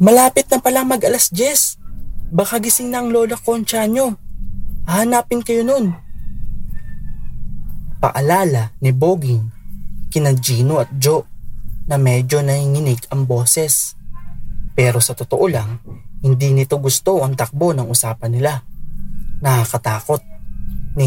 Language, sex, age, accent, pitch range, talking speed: English, male, 20-39, Filipino, 120-185 Hz, 115 wpm